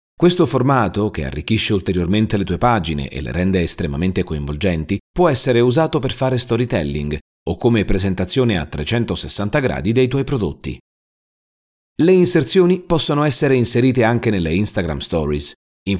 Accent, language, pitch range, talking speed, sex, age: native, Italian, 90-140 Hz, 145 wpm, male, 40-59